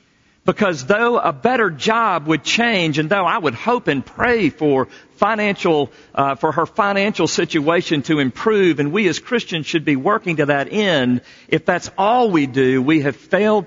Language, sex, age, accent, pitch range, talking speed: English, male, 50-69, American, 130-190 Hz, 180 wpm